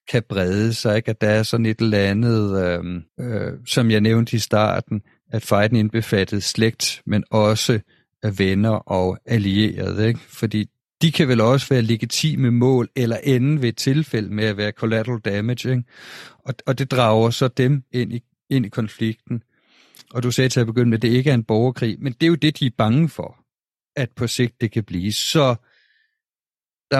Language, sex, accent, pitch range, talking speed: Danish, male, native, 105-130 Hz, 195 wpm